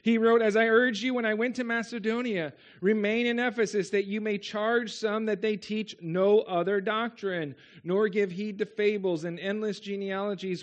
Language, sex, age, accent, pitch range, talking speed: English, male, 40-59, American, 180-230 Hz, 185 wpm